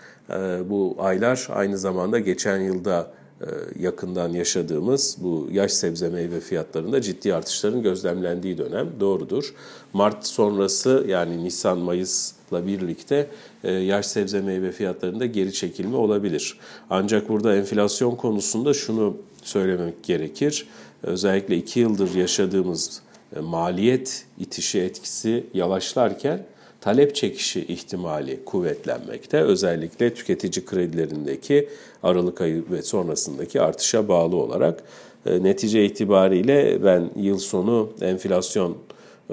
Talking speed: 100 wpm